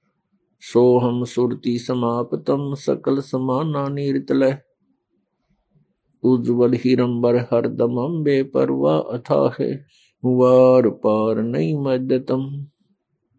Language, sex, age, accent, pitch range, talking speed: Kannada, male, 50-69, native, 125-175 Hz, 75 wpm